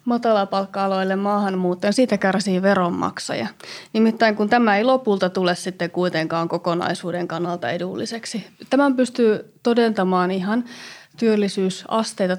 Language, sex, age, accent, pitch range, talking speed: Finnish, female, 30-49, native, 180-225 Hz, 110 wpm